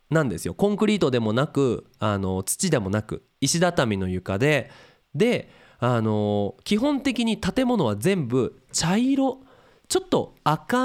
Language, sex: Japanese, male